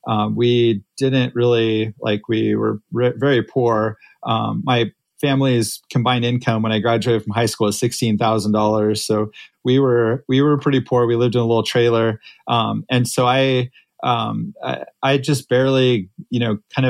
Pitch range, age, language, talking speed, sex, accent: 110-130 Hz, 30-49, English, 170 wpm, male, American